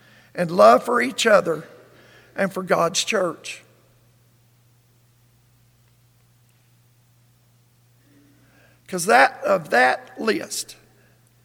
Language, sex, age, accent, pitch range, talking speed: English, male, 50-69, American, 120-190 Hz, 75 wpm